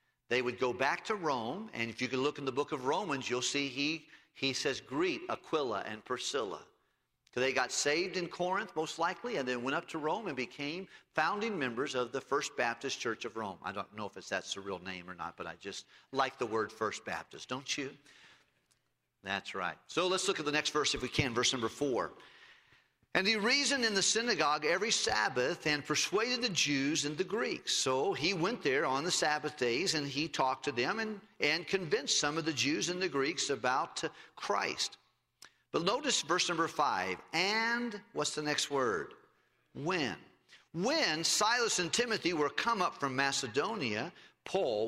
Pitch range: 120-180 Hz